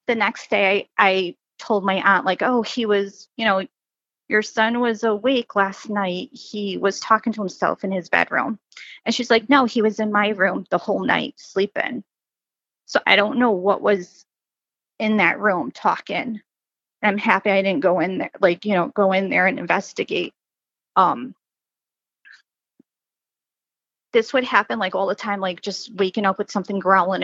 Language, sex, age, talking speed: English, female, 30-49, 180 wpm